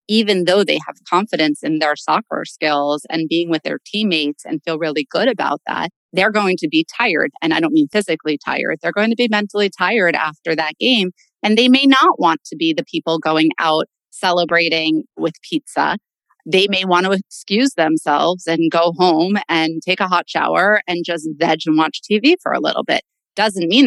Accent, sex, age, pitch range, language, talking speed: American, female, 30-49, 165-220 Hz, English, 200 wpm